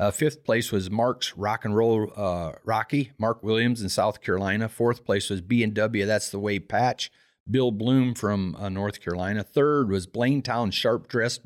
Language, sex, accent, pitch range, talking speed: English, male, American, 100-125 Hz, 180 wpm